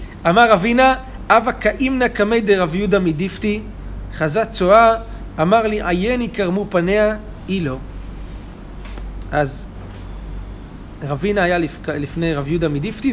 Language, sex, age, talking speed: Hebrew, male, 30-49, 105 wpm